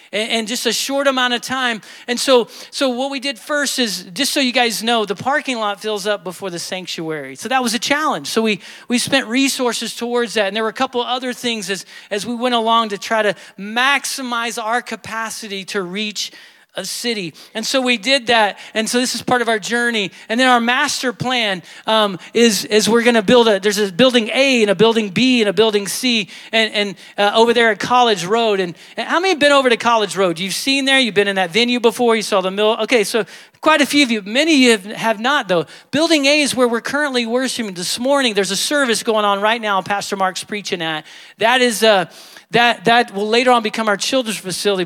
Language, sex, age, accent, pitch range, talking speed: English, male, 40-59, American, 190-245 Hz, 235 wpm